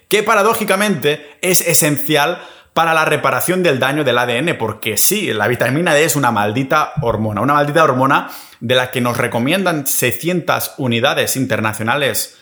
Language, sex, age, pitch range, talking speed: Spanish, male, 30-49, 110-145 Hz, 150 wpm